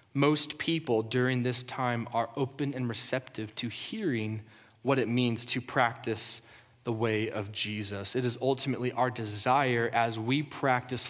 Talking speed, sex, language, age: 150 wpm, male, English, 20-39